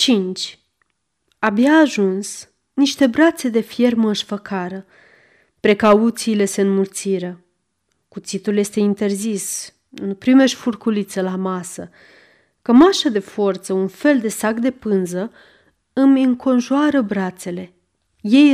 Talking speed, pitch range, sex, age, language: 100 wpm, 190-235 Hz, female, 30-49, Romanian